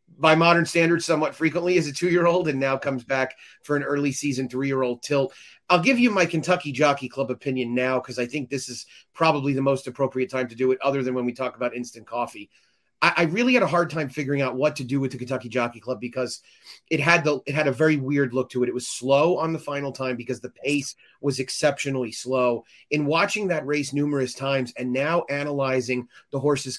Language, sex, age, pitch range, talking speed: English, male, 30-49, 130-145 Hz, 225 wpm